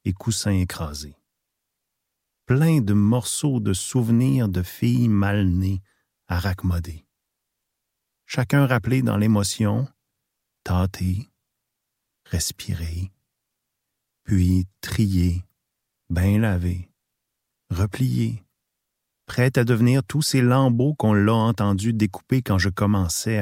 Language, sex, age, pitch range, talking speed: French, male, 40-59, 95-125 Hz, 95 wpm